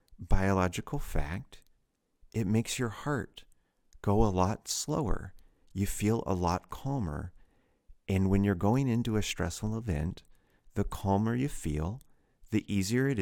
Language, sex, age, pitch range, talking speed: English, male, 50-69, 85-115 Hz, 135 wpm